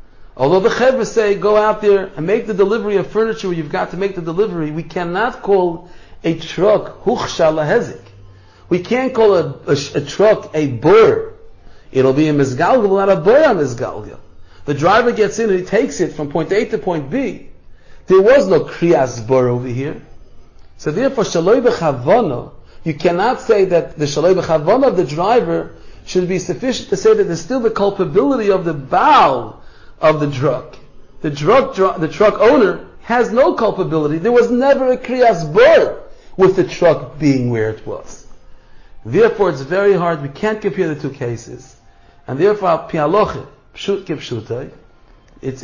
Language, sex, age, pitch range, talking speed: English, male, 50-69, 150-210 Hz, 170 wpm